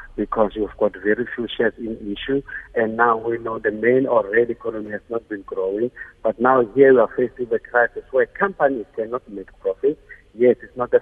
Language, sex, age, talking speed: English, male, 60-79, 205 wpm